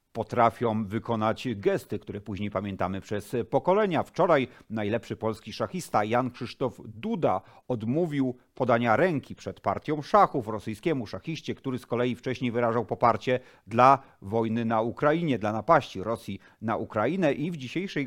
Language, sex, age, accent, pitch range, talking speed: Polish, male, 40-59, native, 110-140 Hz, 135 wpm